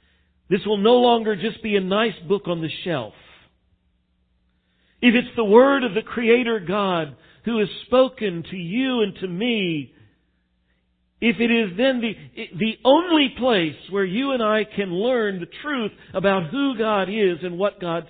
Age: 50-69